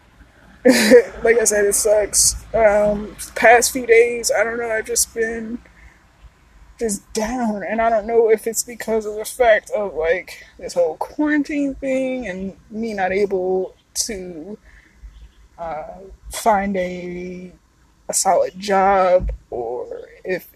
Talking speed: 135 wpm